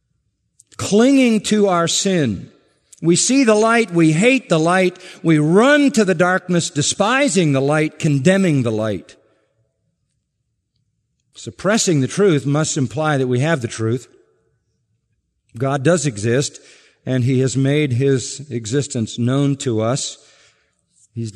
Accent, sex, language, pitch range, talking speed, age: American, male, English, 130-175 Hz, 130 wpm, 50-69